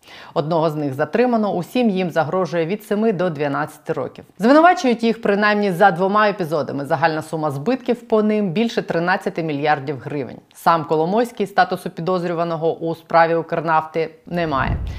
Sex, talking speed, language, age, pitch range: female, 145 wpm, Ukrainian, 30-49, 150-195 Hz